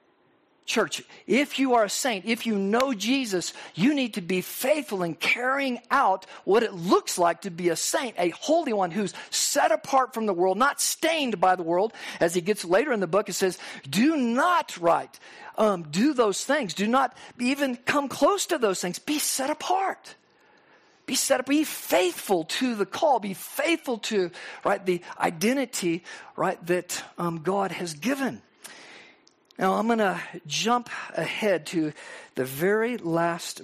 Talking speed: 175 wpm